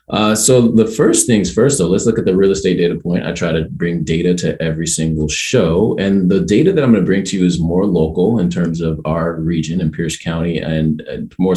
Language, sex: English, male